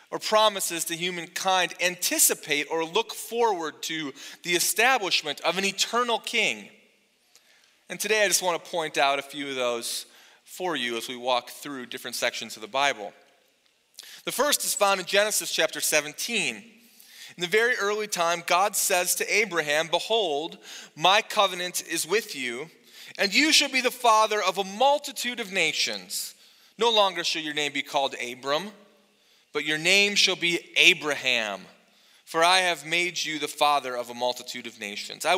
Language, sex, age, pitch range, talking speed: English, male, 30-49, 155-215 Hz, 170 wpm